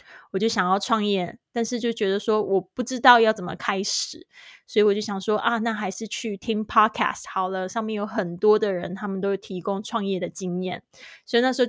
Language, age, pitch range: Chinese, 20-39, 190-235 Hz